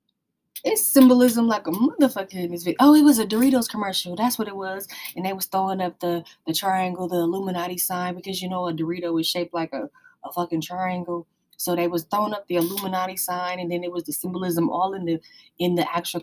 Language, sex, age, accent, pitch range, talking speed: English, female, 20-39, American, 165-195 Hz, 225 wpm